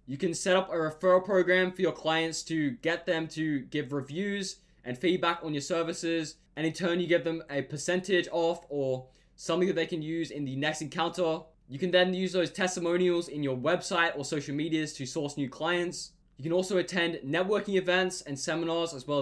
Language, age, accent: English, 10-29, Australian